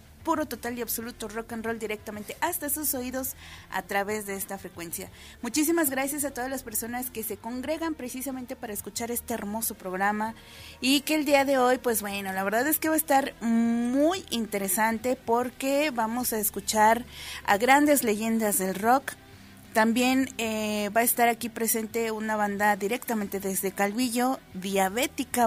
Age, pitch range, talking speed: 30-49, 210-260 Hz, 165 wpm